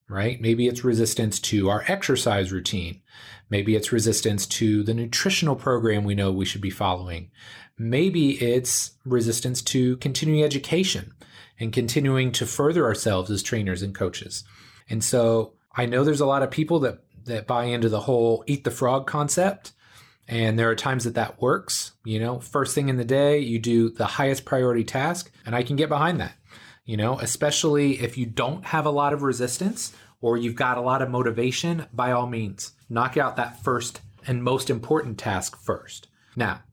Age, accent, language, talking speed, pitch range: 30-49, American, English, 185 wpm, 110-135 Hz